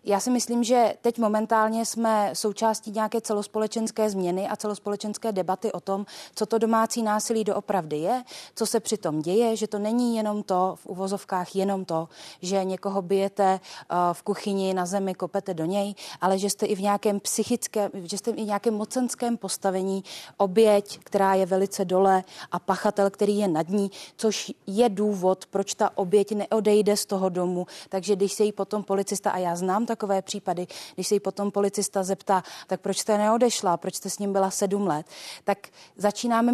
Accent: native